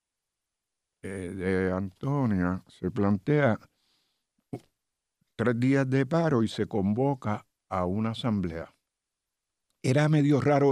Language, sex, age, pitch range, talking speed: Spanish, male, 60-79, 90-115 Hz, 95 wpm